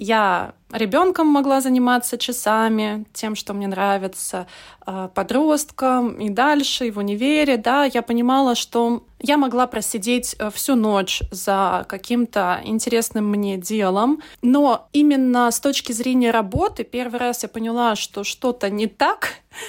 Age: 20-39